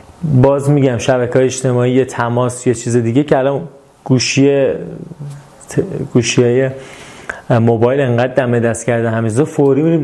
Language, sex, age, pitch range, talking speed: Persian, male, 30-49, 125-170 Hz, 125 wpm